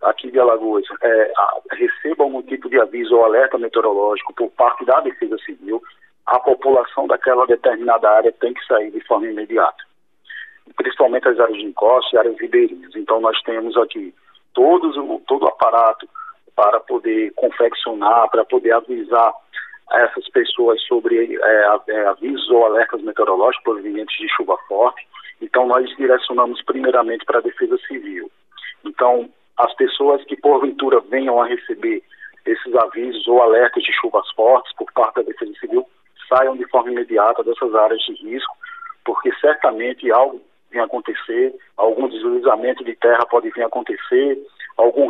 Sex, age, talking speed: male, 50-69, 145 wpm